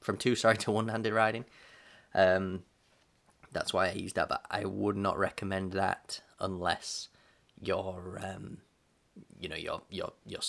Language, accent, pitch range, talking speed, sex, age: English, British, 95-115 Hz, 150 wpm, male, 10-29